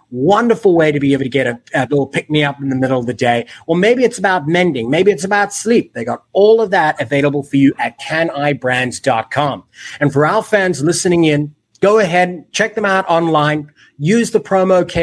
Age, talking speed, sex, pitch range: 30-49, 215 wpm, male, 140-210 Hz